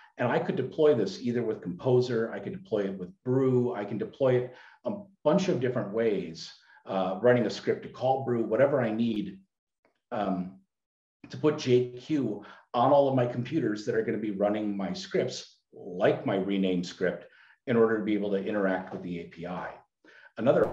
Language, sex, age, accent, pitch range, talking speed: English, male, 50-69, American, 95-125 Hz, 185 wpm